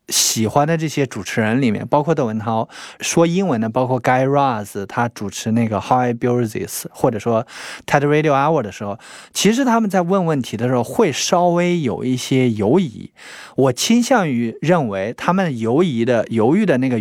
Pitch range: 110-155 Hz